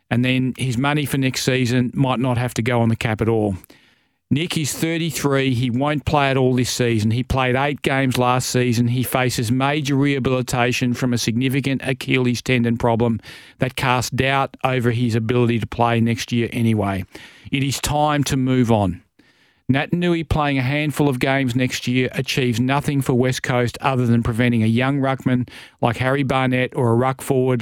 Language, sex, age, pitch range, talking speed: English, male, 40-59, 120-135 Hz, 185 wpm